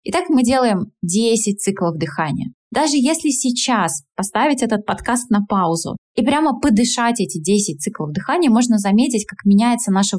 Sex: female